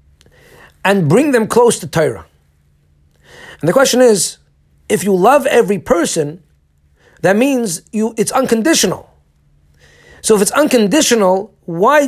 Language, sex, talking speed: English, male, 125 wpm